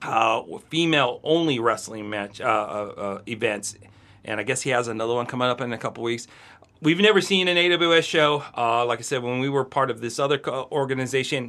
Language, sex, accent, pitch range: English, male, American, 120-150 Hz